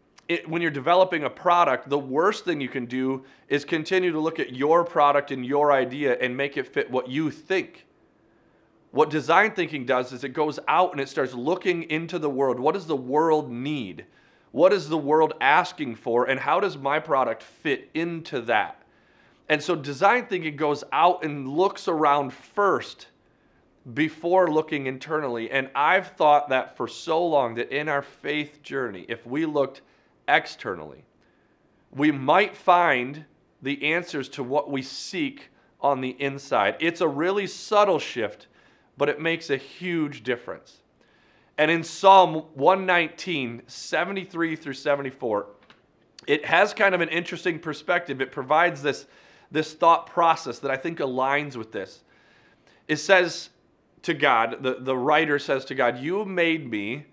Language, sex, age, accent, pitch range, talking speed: English, male, 30-49, American, 140-175 Hz, 160 wpm